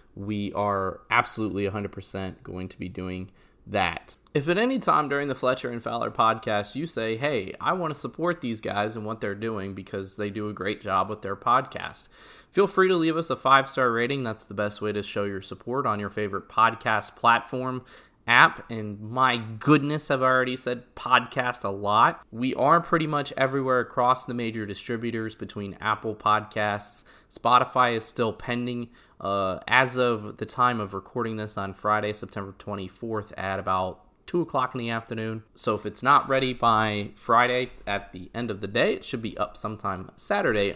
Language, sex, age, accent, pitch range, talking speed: English, male, 20-39, American, 100-125 Hz, 185 wpm